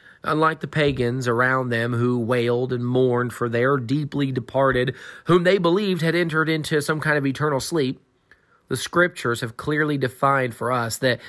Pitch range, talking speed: 115-150 Hz, 170 wpm